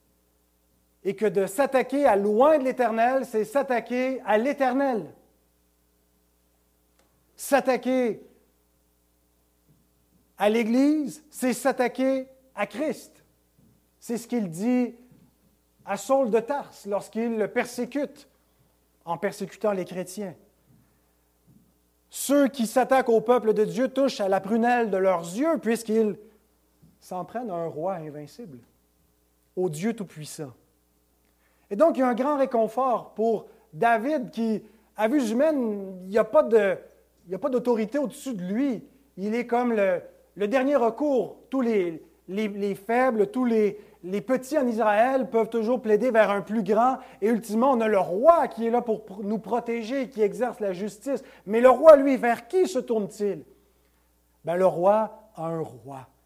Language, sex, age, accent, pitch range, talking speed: French, male, 40-59, French, 175-255 Hz, 145 wpm